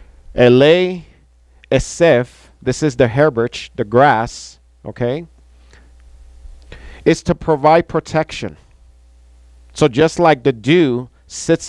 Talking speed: 100 wpm